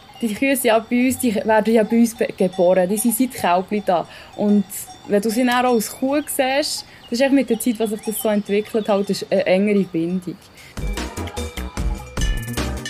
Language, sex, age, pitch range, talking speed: German, female, 10-29, 185-235 Hz, 180 wpm